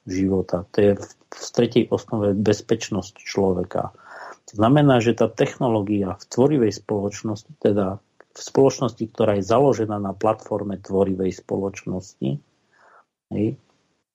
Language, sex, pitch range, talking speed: Slovak, male, 100-115 Hz, 115 wpm